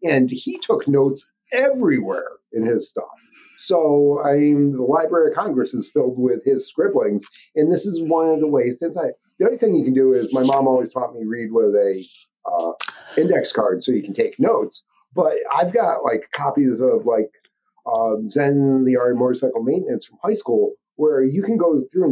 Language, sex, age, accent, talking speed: English, male, 40-59, American, 195 wpm